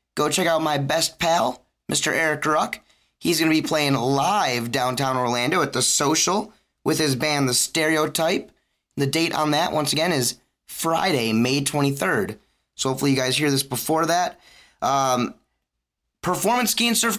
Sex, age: male, 20-39